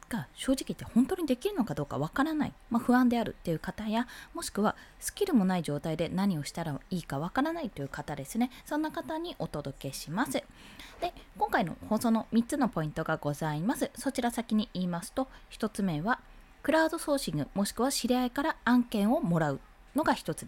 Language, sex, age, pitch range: Japanese, female, 20-39, 165-275 Hz